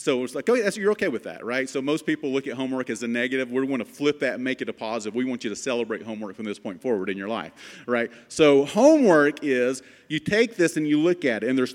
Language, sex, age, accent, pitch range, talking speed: English, male, 40-59, American, 125-170 Hz, 285 wpm